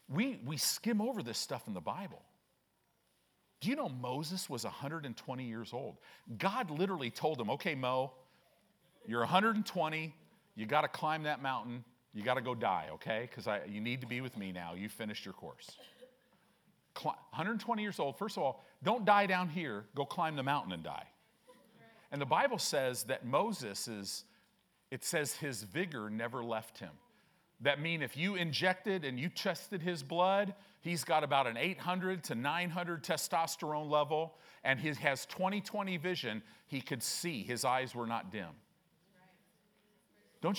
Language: English